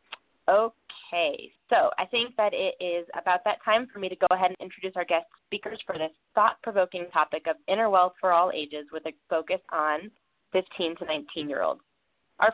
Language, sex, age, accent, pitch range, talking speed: English, female, 20-39, American, 170-205 Hz, 180 wpm